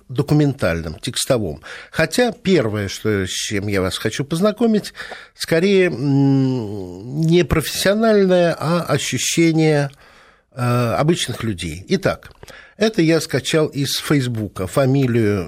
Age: 60-79